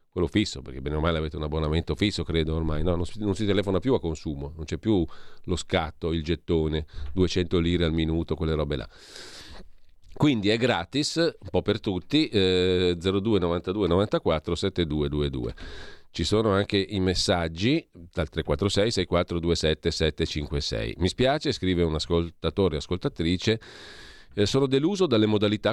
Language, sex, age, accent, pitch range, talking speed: Italian, male, 40-59, native, 85-105 Hz, 150 wpm